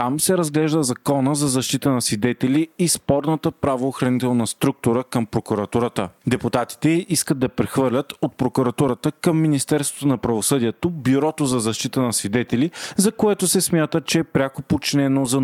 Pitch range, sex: 120-150 Hz, male